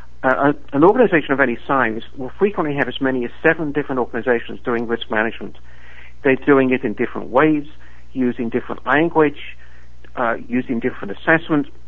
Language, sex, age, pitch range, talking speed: English, male, 60-79, 100-150 Hz, 155 wpm